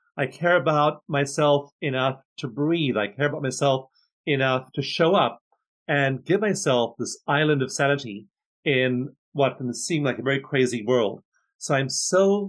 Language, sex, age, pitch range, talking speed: English, male, 40-59, 125-160 Hz, 165 wpm